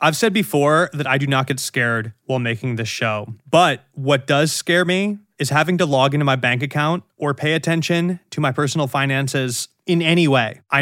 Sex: male